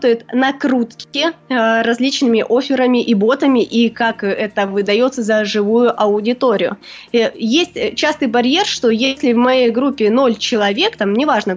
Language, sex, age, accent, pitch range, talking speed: Russian, female, 20-39, native, 220-265 Hz, 125 wpm